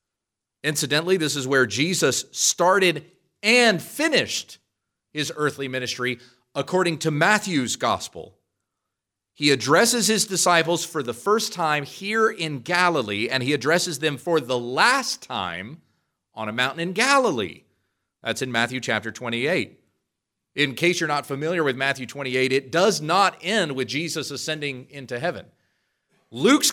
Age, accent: 40-59, American